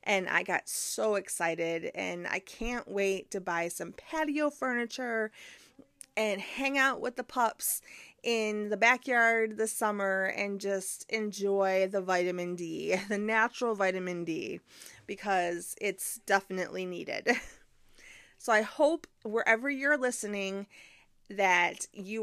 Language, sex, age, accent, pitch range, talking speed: English, female, 30-49, American, 190-235 Hz, 125 wpm